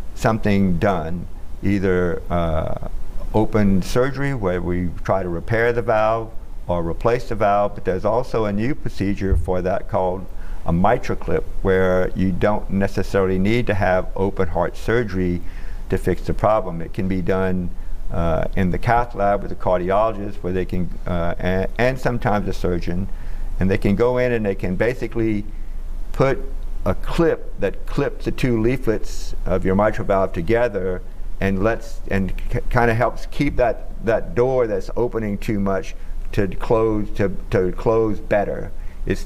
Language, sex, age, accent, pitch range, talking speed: English, male, 50-69, American, 90-110 Hz, 160 wpm